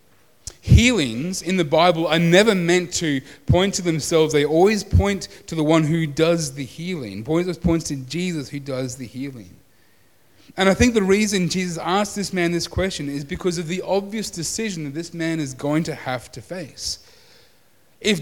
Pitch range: 145-190 Hz